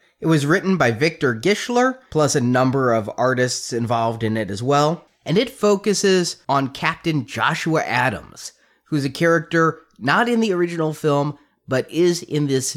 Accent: American